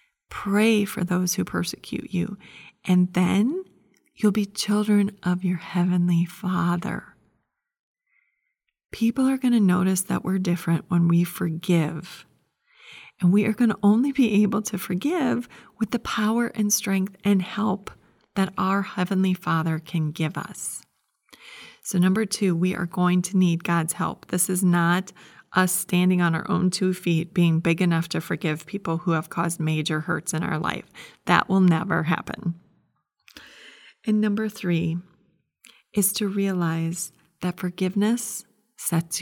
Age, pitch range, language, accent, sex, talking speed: 30-49, 170-205 Hz, English, American, female, 150 wpm